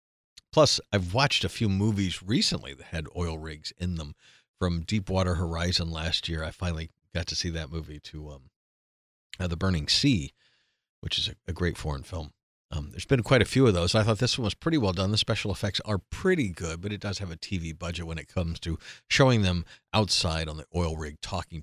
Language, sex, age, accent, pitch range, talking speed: English, male, 50-69, American, 80-105 Hz, 220 wpm